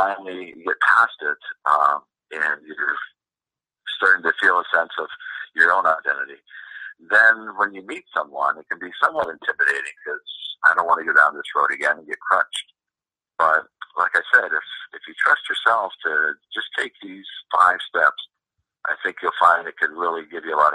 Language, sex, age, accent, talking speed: English, male, 50-69, American, 190 wpm